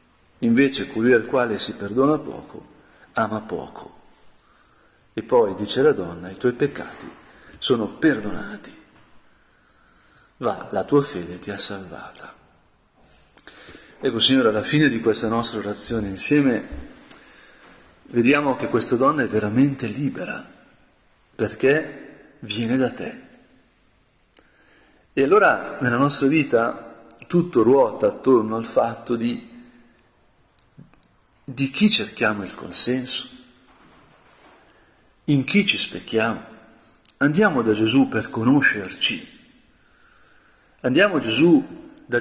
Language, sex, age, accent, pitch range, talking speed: Italian, male, 40-59, native, 115-150 Hz, 105 wpm